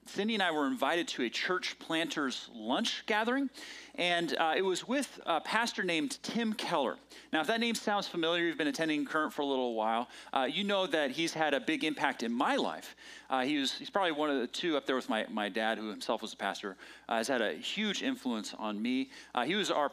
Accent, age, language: American, 30-49, English